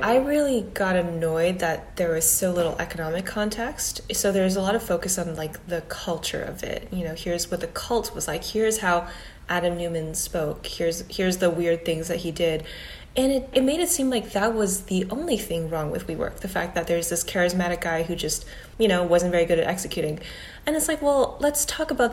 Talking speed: 225 wpm